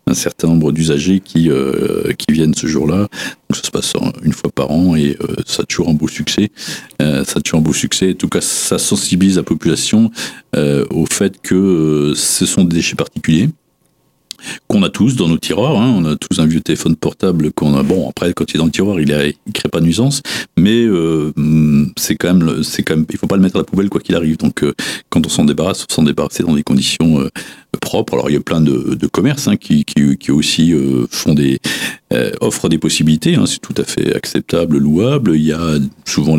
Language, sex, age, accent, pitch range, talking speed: French, male, 50-69, French, 75-90 Hz, 235 wpm